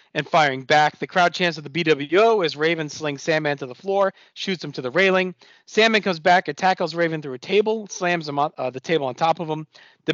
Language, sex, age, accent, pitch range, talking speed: English, male, 40-59, American, 155-200 Hz, 230 wpm